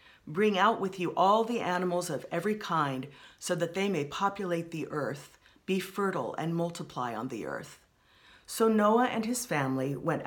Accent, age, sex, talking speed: American, 40-59, female, 175 wpm